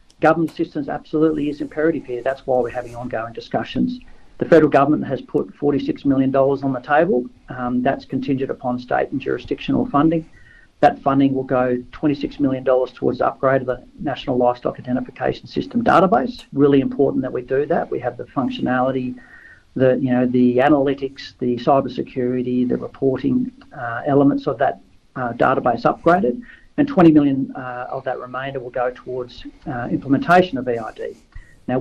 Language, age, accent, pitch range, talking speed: English, 50-69, Australian, 125-150 Hz, 170 wpm